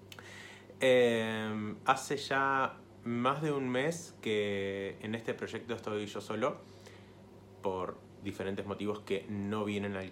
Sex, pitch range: male, 95-115 Hz